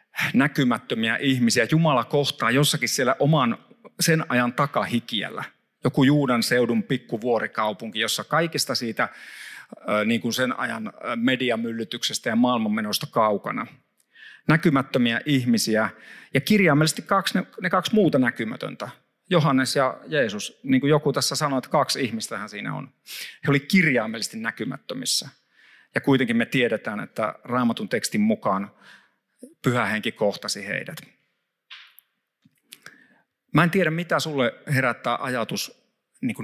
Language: Finnish